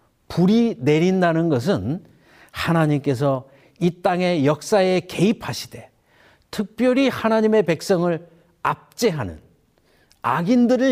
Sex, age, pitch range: male, 50-69, 135-195 Hz